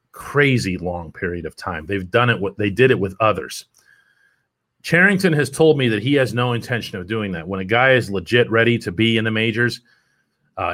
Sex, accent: male, American